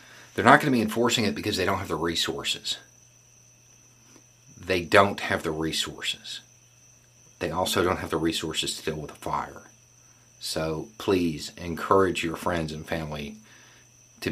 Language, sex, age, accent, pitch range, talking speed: English, male, 40-59, American, 85-120 Hz, 155 wpm